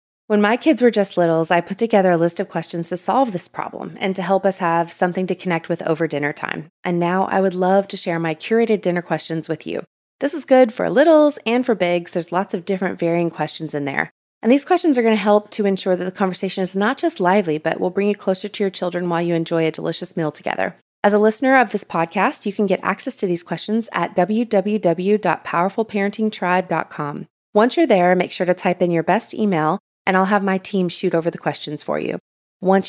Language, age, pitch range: English, 30-49, 170-210 Hz